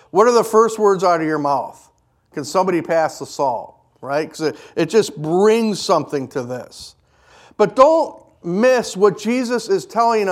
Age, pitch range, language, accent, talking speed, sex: 50-69, 175-230 Hz, English, American, 170 wpm, male